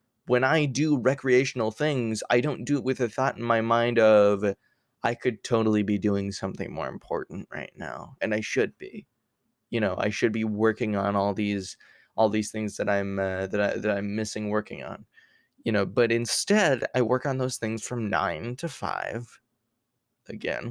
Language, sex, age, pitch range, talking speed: English, male, 20-39, 105-130 Hz, 190 wpm